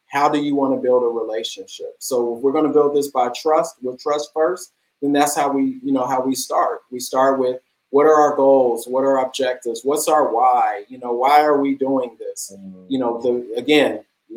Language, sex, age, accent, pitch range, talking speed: English, male, 30-49, American, 130-155 Hz, 230 wpm